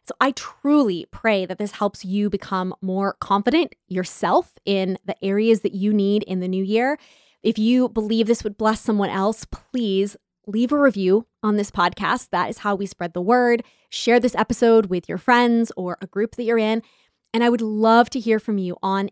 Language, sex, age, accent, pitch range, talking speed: English, female, 20-39, American, 195-230 Hz, 205 wpm